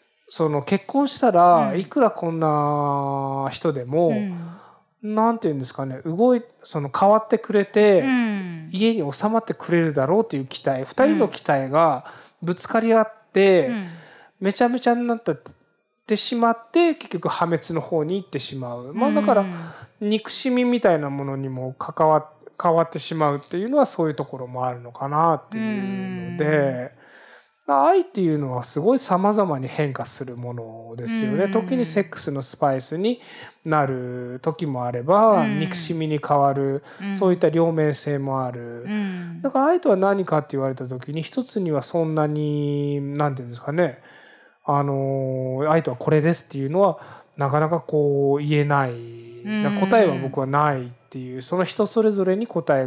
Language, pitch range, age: Japanese, 140-205 Hz, 20-39